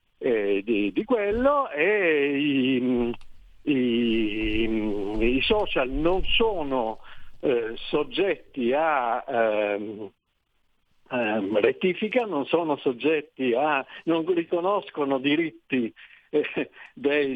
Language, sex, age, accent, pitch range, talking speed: Italian, male, 60-79, native, 130-210 Hz, 85 wpm